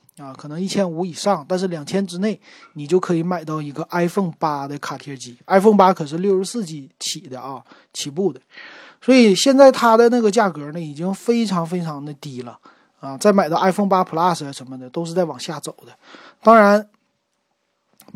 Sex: male